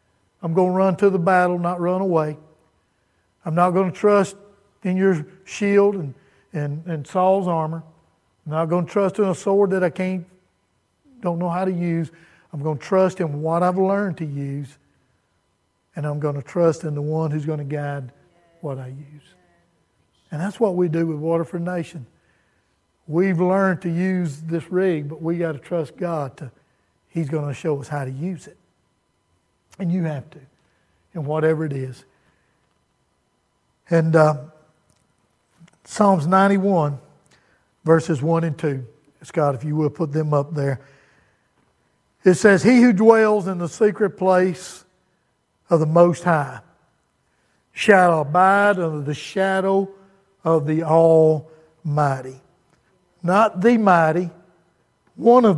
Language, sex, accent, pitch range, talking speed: English, male, American, 150-185 Hz, 155 wpm